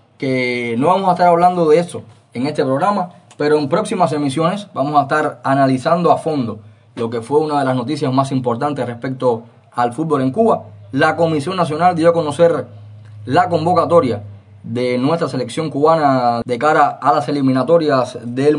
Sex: male